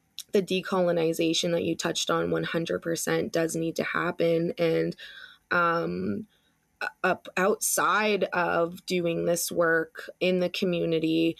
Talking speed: 125 wpm